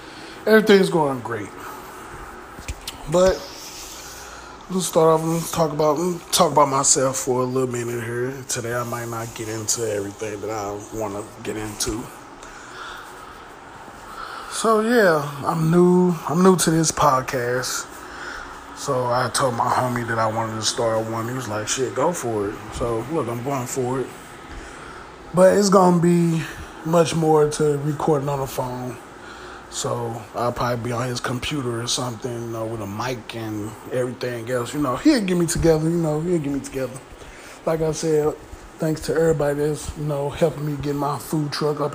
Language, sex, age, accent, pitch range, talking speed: English, male, 20-39, American, 120-160 Hz, 175 wpm